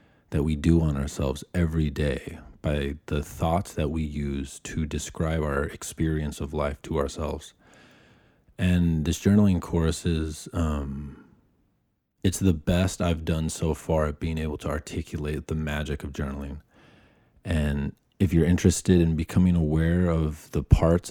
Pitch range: 75-85 Hz